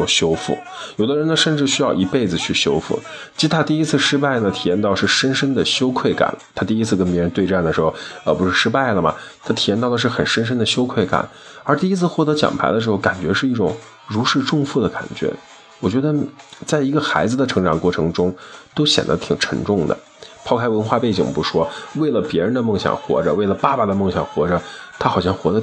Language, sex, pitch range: Chinese, male, 105-150 Hz